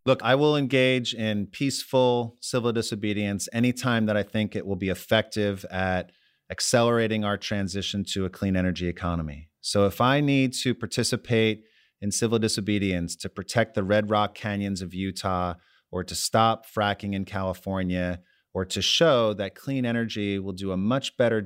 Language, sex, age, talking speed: English, male, 30-49, 165 wpm